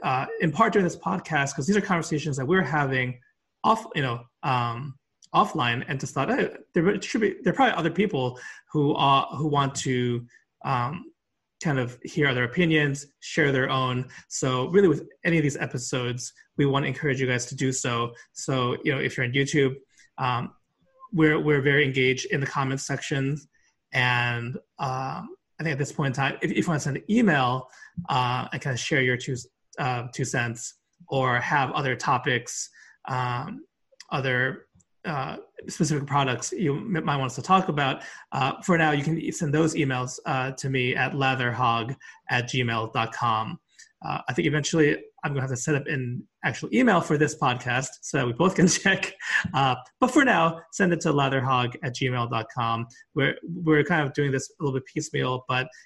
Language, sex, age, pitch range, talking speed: English, male, 30-49, 130-160 Hz, 195 wpm